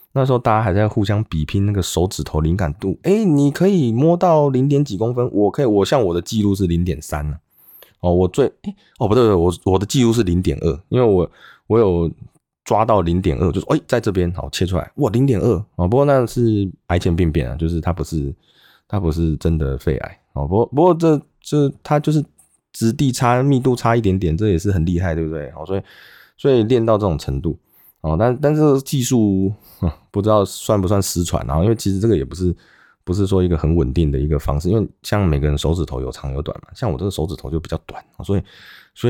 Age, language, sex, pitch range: 20-39, Chinese, male, 80-110 Hz